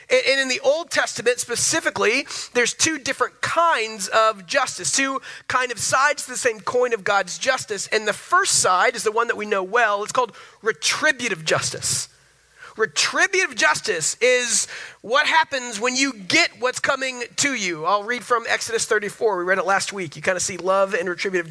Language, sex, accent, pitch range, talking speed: English, male, American, 165-245 Hz, 185 wpm